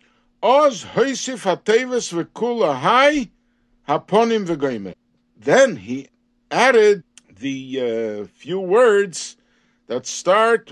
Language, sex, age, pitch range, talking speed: English, male, 60-79, 145-230 Hz, 90 wpm